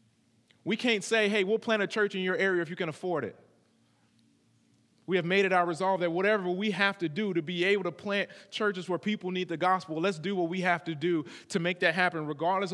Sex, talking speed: male, 240 wpm